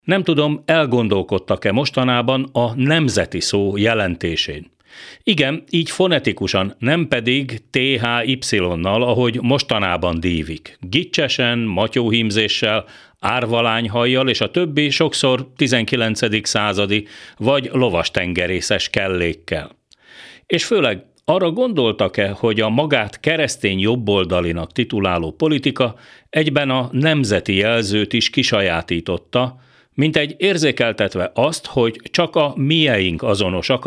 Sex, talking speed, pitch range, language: male, 95 wpm, 100-140 Hz, Hungarian